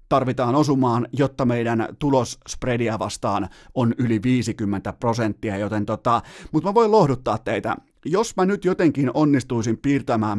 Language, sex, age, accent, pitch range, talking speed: Finnish, male, 30-49, native, 115-150 Hz, 125 wpm